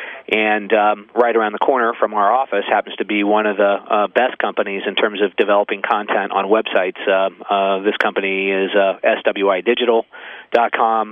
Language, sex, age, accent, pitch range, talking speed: English, male, 40-59, American, 100-110 Hz, 175 wpm